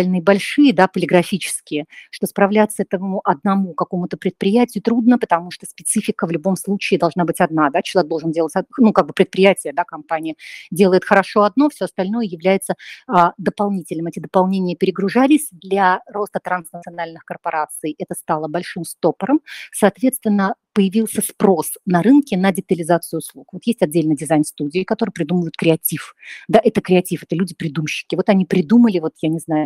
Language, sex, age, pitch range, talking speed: Russian, female, 30-49, 165-205 Hz, 145 wpm